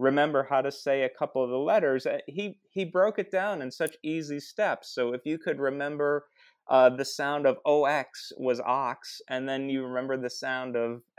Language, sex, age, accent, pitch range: Chinese, male, 30-49, American, 125-160 Hz